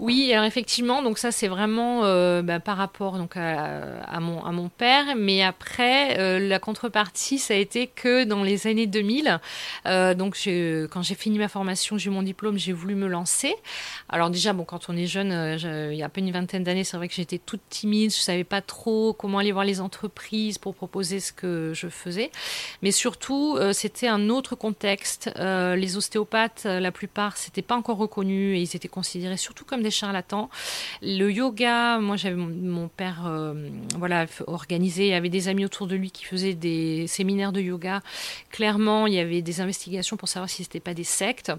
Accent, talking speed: French, 205 wpm